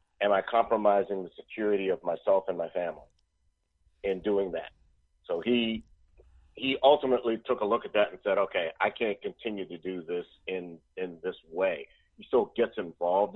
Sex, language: male, English